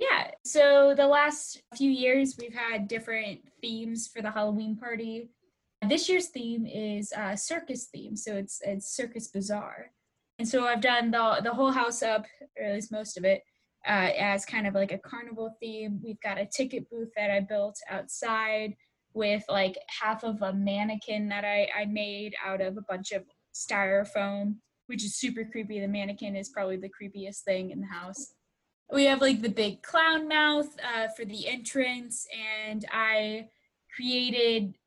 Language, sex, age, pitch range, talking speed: English, female, 10-29, 200-235 Hz, 175 wpm